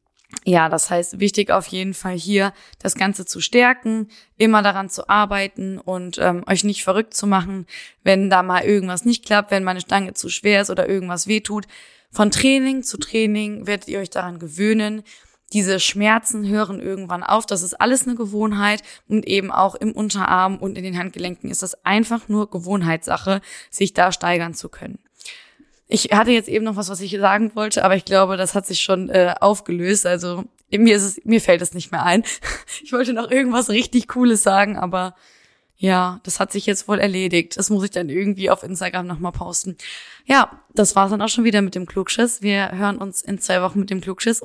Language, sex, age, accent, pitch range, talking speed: German, female, 20-39, German, 185-215 Hz, 200 wpm